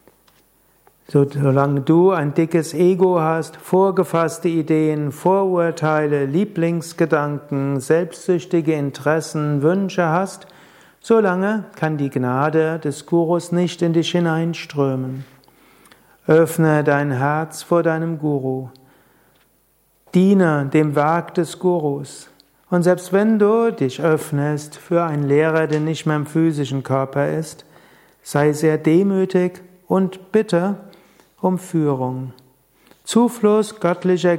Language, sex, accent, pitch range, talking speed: German, male, German, 145-180 Hz, 105 wpm